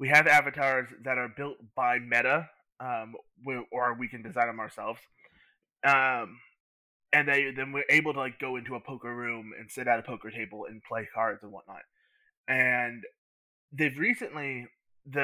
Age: 20-39